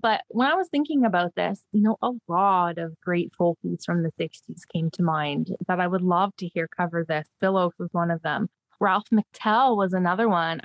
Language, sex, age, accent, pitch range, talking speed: English, female, 20-39, American, 180-225 Hz, 220 wpm